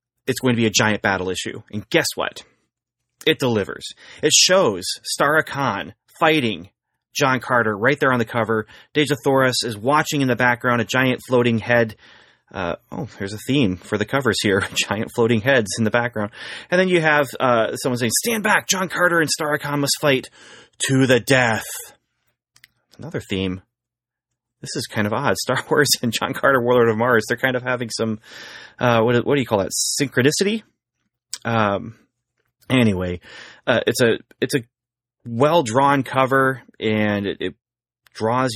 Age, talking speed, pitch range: 30-49, 170 wpm, 110-135 Hz